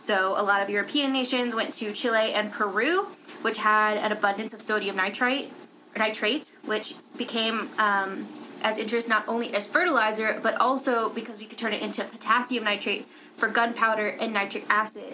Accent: American